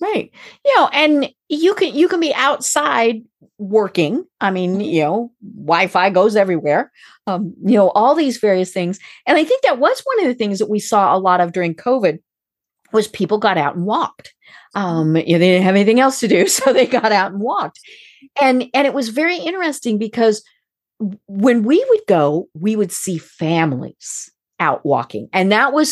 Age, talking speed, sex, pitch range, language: 40-59, 195 wpm, female, 175-255 Hz, English